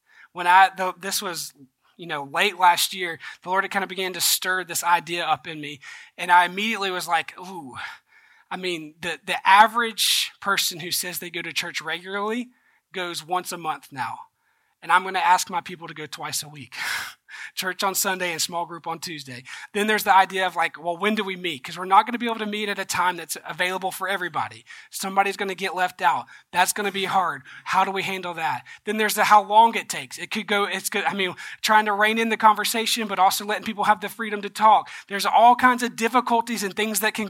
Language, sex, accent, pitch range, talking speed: English, male, American, 180-225 Hz, 235 wpm